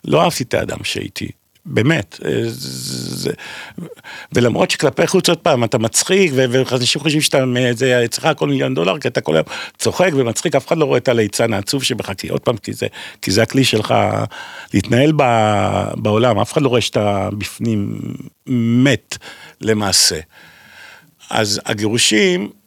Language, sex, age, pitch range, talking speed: Hebrew, male, 50-69, 100-135 Hz, 155 wpm